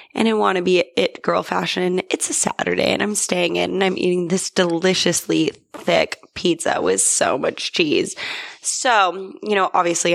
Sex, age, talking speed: female, 10-29, 165 wpm